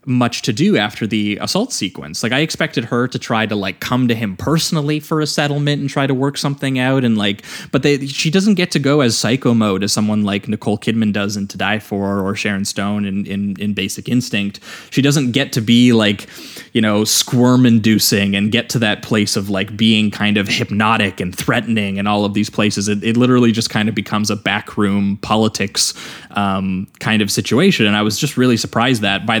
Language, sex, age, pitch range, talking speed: English, male, 20-39, 105-130 Hz, 220 wpm